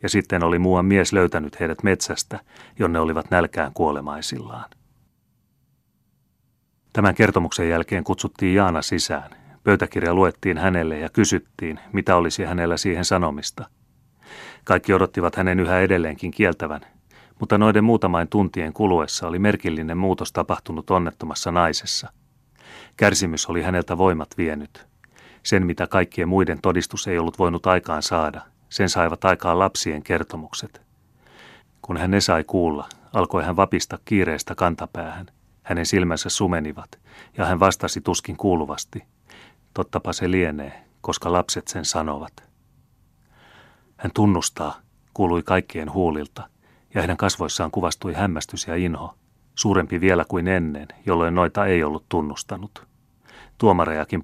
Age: 30-49